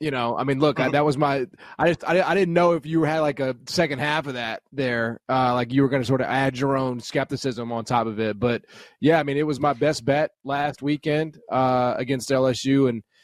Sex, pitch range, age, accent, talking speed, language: male, 120-145 Hz, 20-39, American, 260 wpm, English